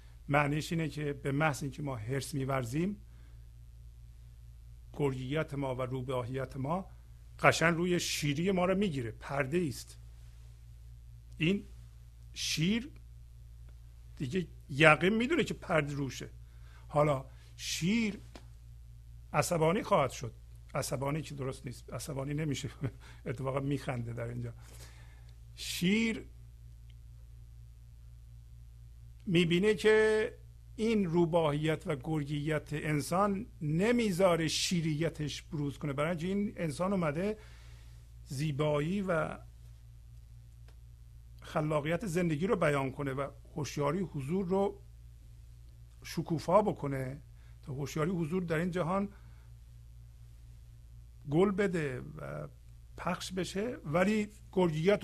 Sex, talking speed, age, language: male, 95 wpm, 50-69, Persian